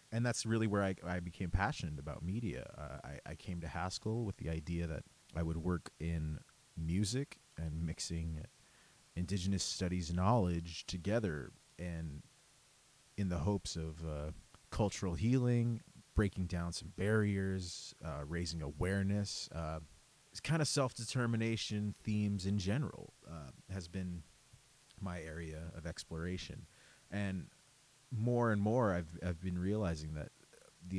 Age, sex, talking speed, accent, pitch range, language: 30-49, male, 135 wpm, American, 80-115 Hz, English